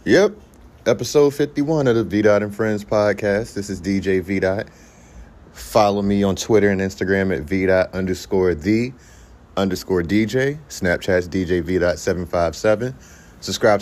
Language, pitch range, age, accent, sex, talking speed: English, 90-110 Hz, 30-49, American, male, 150 wpm